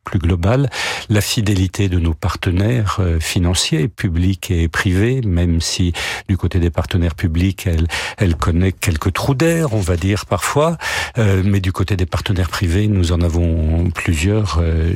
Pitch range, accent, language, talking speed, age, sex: 85-105 Hz, French, French, 160 wpm, 50-69, male